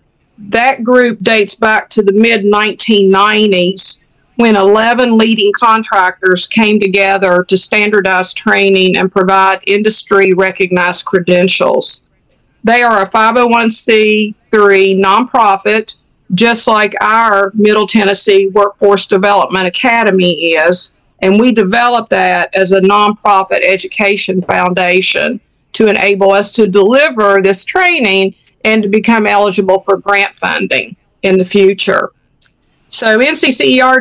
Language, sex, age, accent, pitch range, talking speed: English, female, 50-69, American, 195-225 Hz, 110 wpm